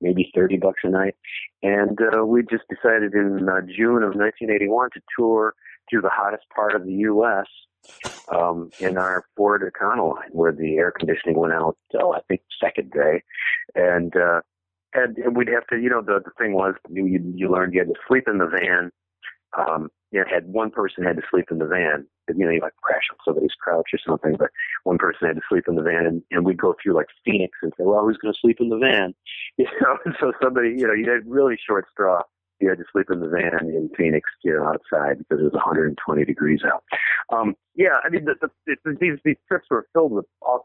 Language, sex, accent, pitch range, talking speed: English, male, American, 90-115 Hz, 235 wpm